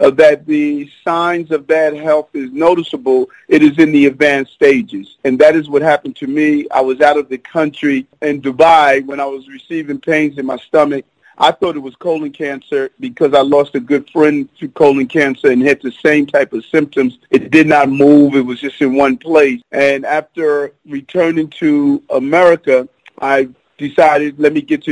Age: 40-59